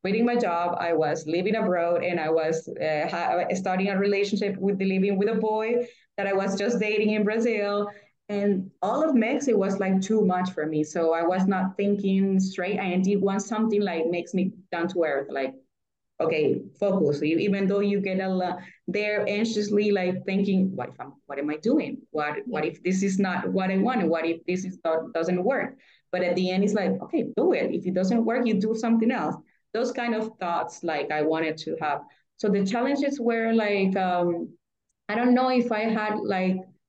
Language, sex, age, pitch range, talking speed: English, female, 20-39, 170-205 Hz, 215 wpm